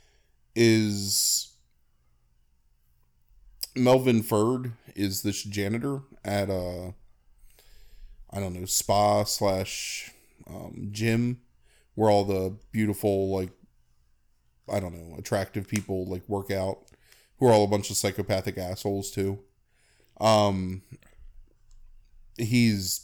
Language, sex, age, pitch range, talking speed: English, male, 20-39, 95-110 Hz, 100 wpm